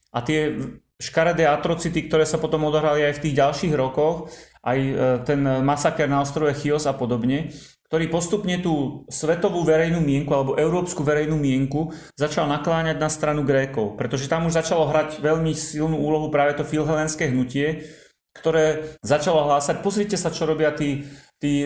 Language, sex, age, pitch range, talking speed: Slovak, male, 30-49, 140-155 Hz, 160 wpm